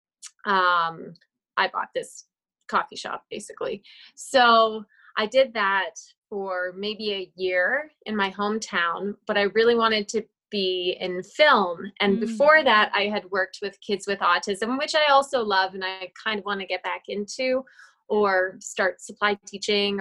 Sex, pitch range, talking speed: female, 195-245 Hz, 160 wpm